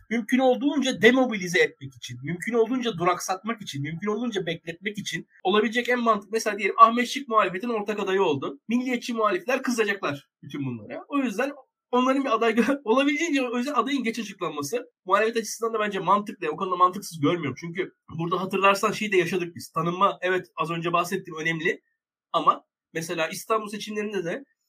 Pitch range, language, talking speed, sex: 180-235 Hz, Turkish, 160 wpm, male